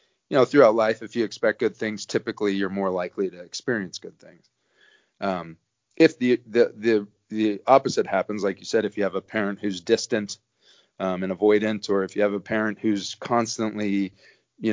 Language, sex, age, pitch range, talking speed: English, male, 30-49, 100-115 Hz, 190 wpm